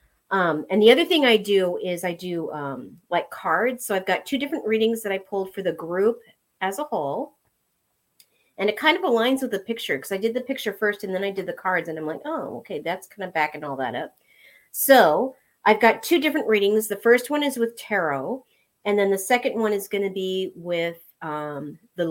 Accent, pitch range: American, 175-240 Hz